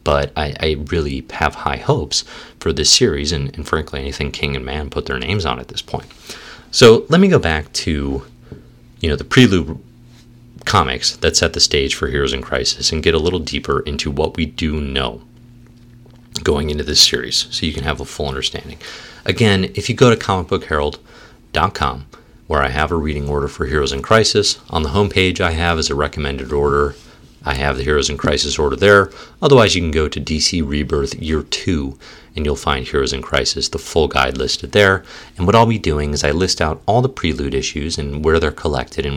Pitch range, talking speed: 70-100 Hz, 205 wpm